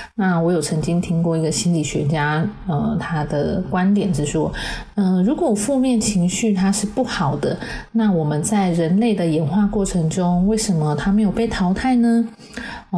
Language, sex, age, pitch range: Chinese, female, 30-49, 165-220 Hz